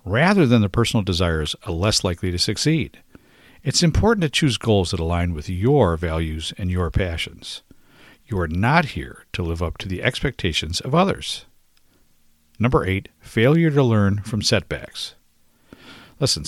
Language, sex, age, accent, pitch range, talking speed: English, male, 50-69, American, 85-125 Hz, 155 wpm